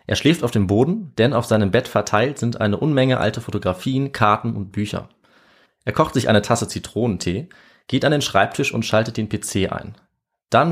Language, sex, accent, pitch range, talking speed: German, male, German, 105-125 Hz, 190 wpm